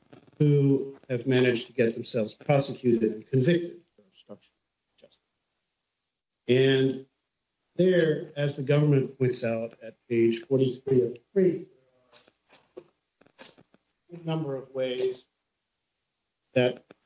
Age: 50-69